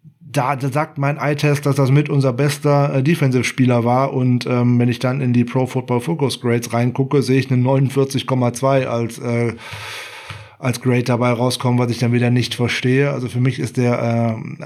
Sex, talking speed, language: male, 190 wpm, German